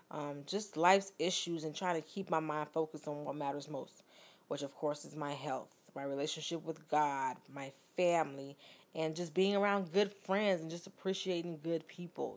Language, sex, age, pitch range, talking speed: English, female, 20-39, 150-180 Hz, 185 wpm